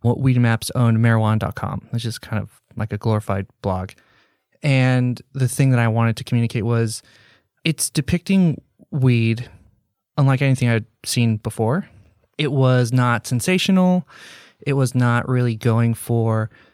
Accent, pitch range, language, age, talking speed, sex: American, 110-135 Hz, English, 20-39, 145 wpm, male